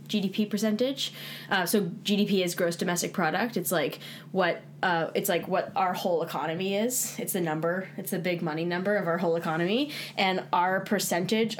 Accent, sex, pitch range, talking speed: American, female, 170-215 Hz, 180 wpm